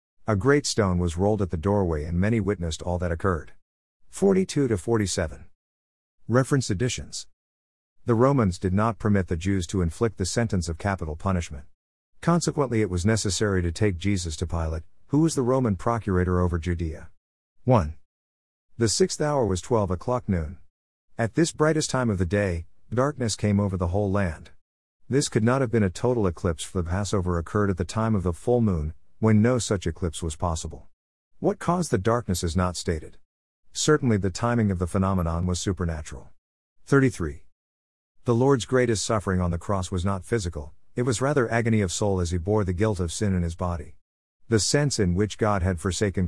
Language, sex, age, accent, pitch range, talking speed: English, male, 50-69, American, 85-115 Hz, 185 wpm